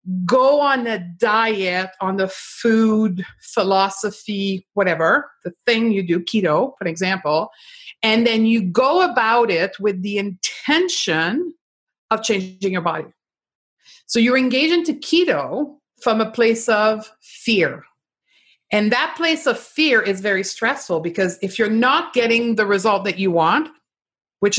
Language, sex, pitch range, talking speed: English, female, 185-235 Hz, 140 wpm